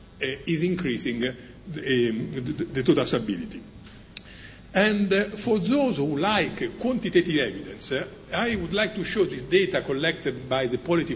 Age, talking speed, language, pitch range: 50-69, 155 wpm, English, 140-195 Hz